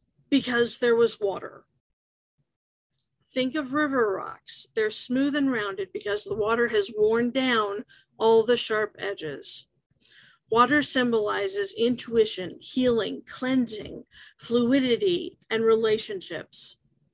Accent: American